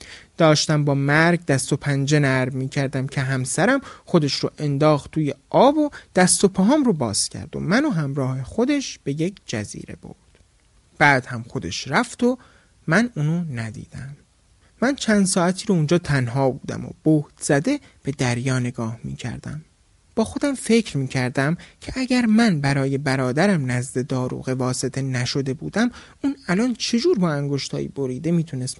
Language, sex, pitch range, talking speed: Persian, male, 125-180 Hz, 160 wpm